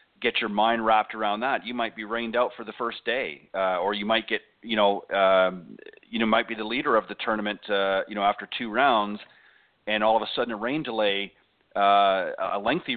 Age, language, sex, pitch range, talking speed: 40-59, English, male, 100-115 Hz, 225 wpm